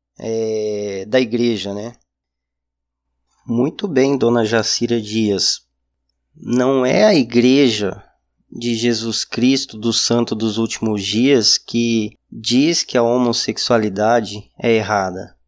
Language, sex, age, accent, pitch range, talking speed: Portuguese, male, 20-39, Brazilian, 100-135 Hz, 105 wpm